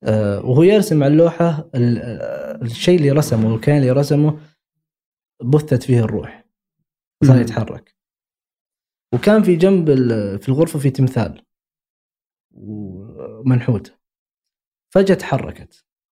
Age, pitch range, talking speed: 20-39, 120-155 Hz, 95 wpm